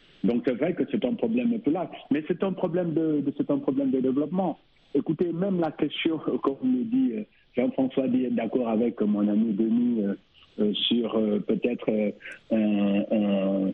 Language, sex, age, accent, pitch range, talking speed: French, male, 60-79, French, 105-130 Hz, 185 wpm